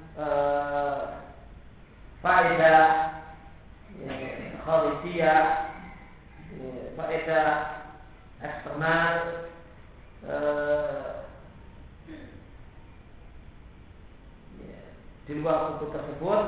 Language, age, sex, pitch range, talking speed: Malay, 40-59, male, 145-160 Hz, 45 wpm